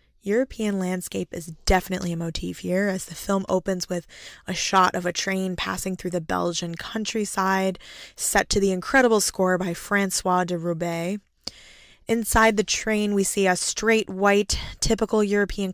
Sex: female